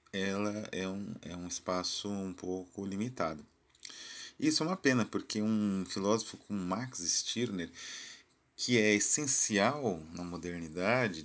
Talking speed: 125 wpm